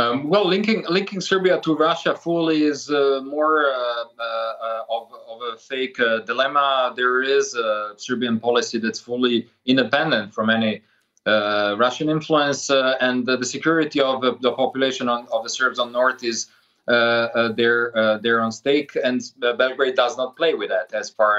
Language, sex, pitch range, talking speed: English, male, 115-145 Hz, 180 wpm